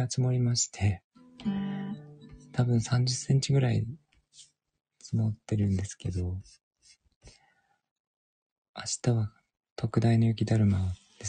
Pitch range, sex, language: 105-130 Hz, male, Japanese